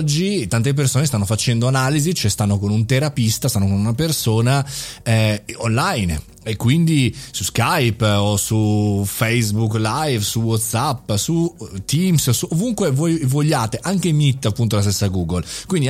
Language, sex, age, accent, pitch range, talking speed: Italian, male, 30-49, native, 110-150 Hz, 145 wpm